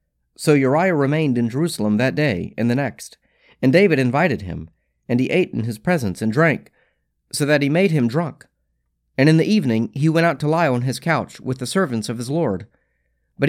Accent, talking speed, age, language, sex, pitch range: American, 210 wpm, 40-59, English, male, 100-155 Hz